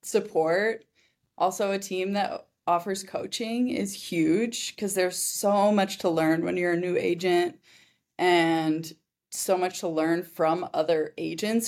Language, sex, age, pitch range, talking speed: English, female, 20-39, 160-195 Hz, 145 wpm